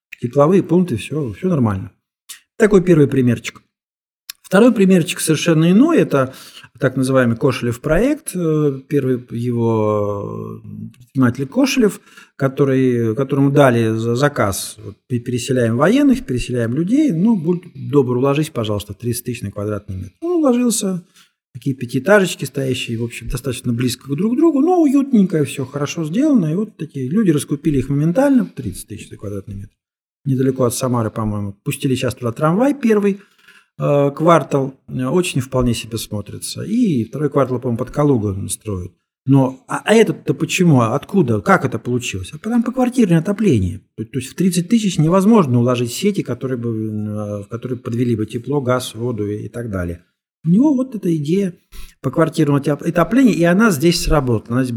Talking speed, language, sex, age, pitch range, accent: 150 wpm, Russian, male, 50-69, 115-175 Hz, native